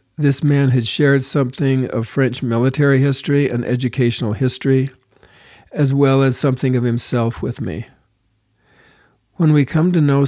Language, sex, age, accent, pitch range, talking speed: English, male, 50-69, American, 115-135 Hz, 145 wpm